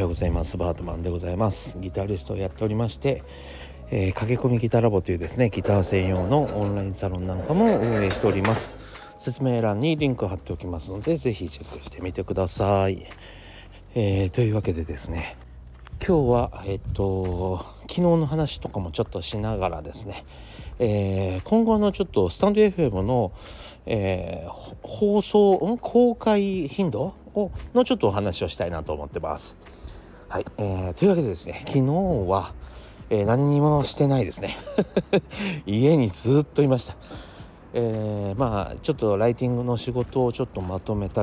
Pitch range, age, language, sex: 90-130 Hz, 40-59, Japanese, male